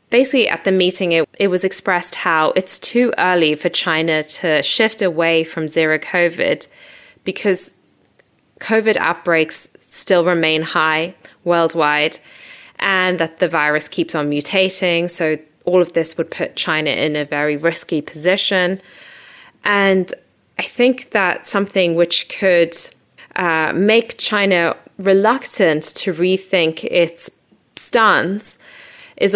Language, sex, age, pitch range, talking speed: English, female, 20-39, 160-200 Hz, 125 wpm